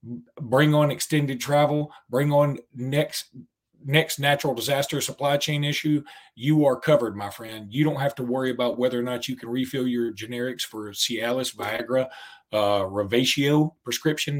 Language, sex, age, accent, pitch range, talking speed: English, male, 40-59, American, 120-145 Hz, 160 wpm